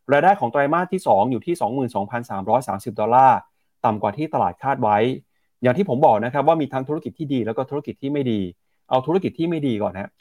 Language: Thai